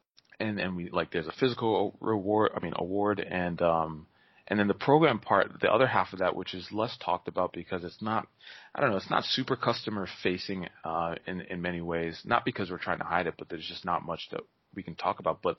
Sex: male